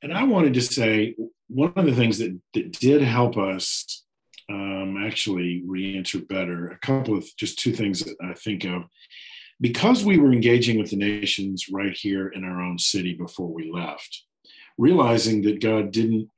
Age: 50-69